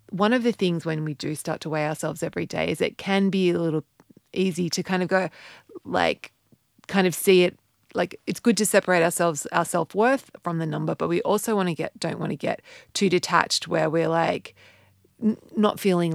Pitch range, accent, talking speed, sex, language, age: 160-195 Hz, Australian, 210 wpm, female, English, 30-49